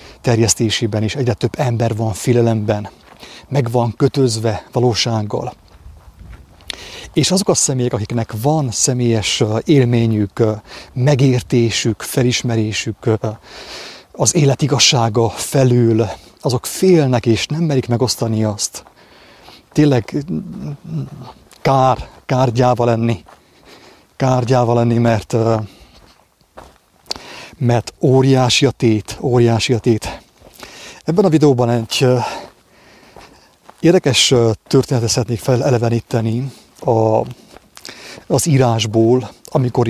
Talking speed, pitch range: 85 wpm, 115-130 Hz